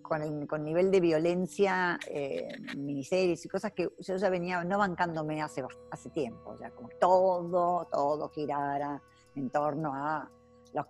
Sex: female